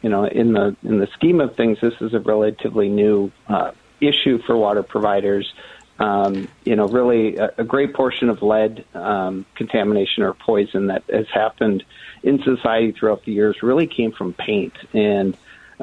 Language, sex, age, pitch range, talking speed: English, male, 50-69, 105-120 Hz, 175 wpm